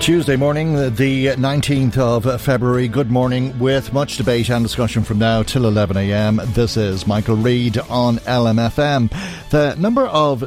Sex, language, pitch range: male, English, 100-125 Hz